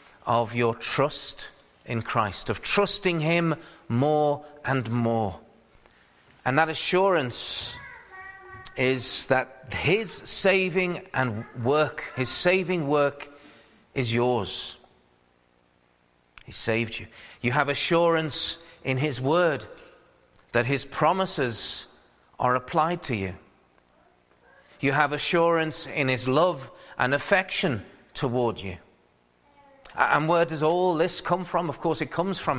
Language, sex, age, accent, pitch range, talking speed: English, male, 40-59, British, 115-170 Hz, 115 wpm